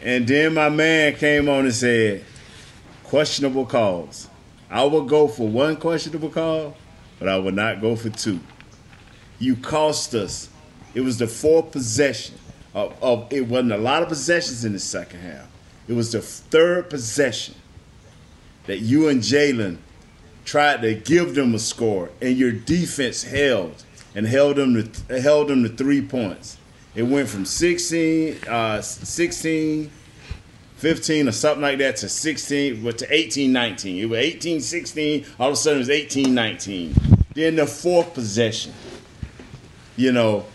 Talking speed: 155 wpm